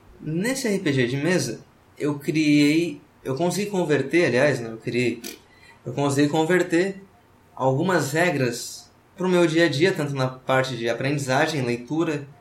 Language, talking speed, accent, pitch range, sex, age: Portuguese, 135 wpm, Brazilian, 125-165 Hz, male, 20-39